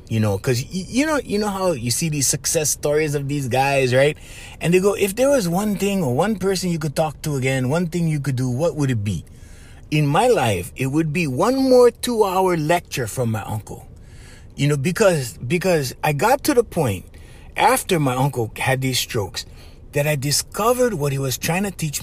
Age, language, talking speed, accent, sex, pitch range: 30-49, English, 215 wpm, American, male, 125-165 Hz